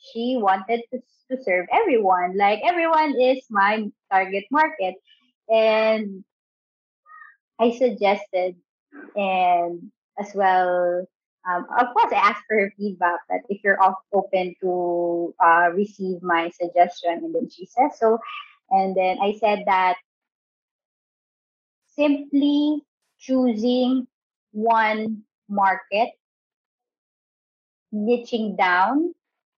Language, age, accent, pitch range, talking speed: English, 20-39, Filipino, 190-250 Hz, 105 wpm